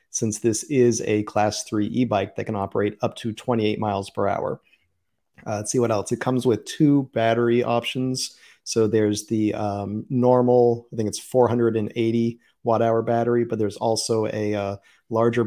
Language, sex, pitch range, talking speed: English, male, 105-120 Hz, 165 wpm